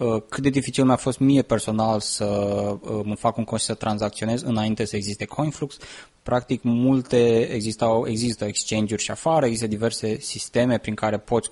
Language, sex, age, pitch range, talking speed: Romanian, male, 20-39, 105-120 Hz, 155 wpm